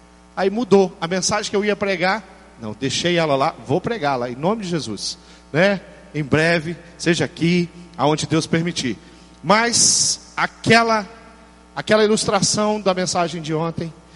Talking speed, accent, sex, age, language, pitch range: 150 wpm, Brazilian, male, 40-59, Portuguese, 155-235 Hz